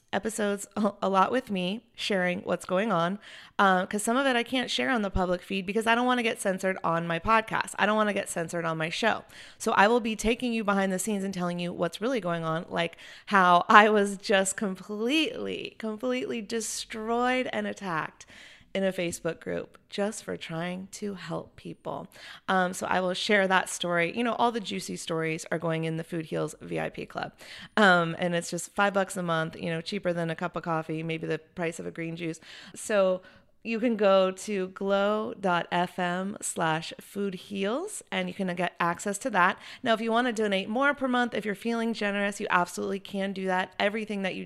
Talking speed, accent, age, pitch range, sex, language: 210 wpm, American, 30-49, 175-210 Hz, female, English